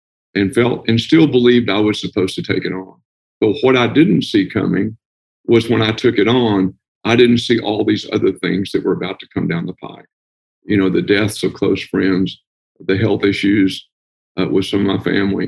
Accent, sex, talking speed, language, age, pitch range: American, male, 215 wpm, English, 50-69, 95-115 Hz